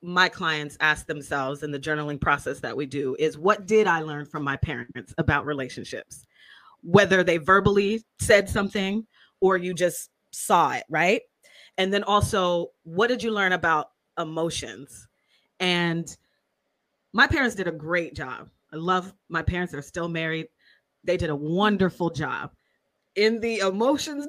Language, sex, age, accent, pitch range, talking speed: English, female, 30-49, American, 165-230 Hz, 160 wpm